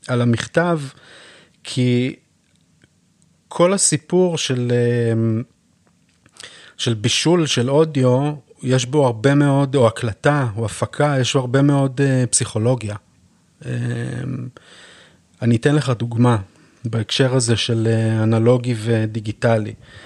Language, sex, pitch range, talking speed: Hebrew, male, 115-140 Hz, 95 wpm